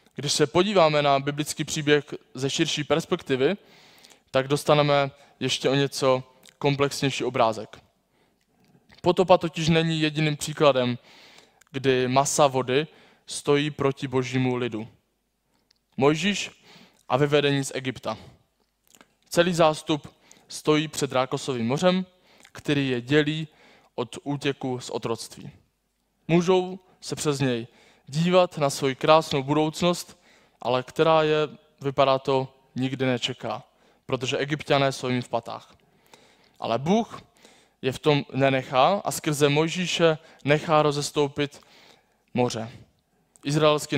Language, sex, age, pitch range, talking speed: Czech, male, 20-39, 130-155 Hz, 110 wpm